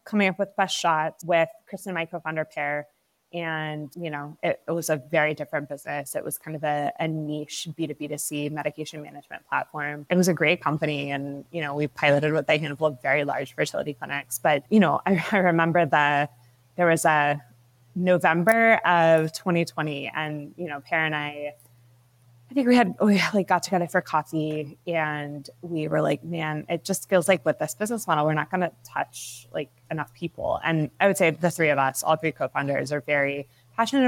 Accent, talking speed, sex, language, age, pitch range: American, 200 wpm, female, English, 20-39, 145-170 Hz